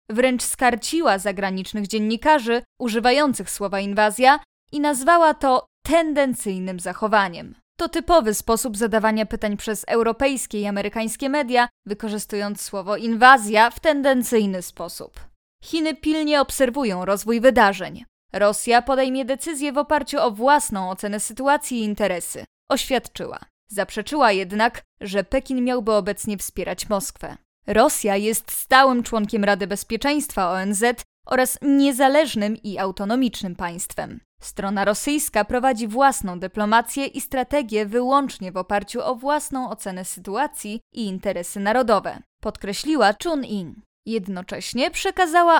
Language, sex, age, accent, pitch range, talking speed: Polish, female, 20-39, native, 205-270 Hz, 115 wpm